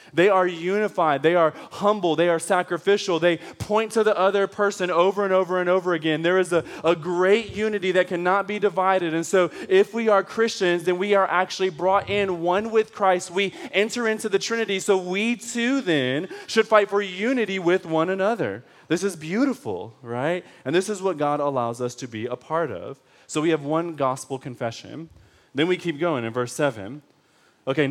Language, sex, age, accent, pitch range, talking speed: English, male, 20-39, American, 140-190 Hz, 200 wpm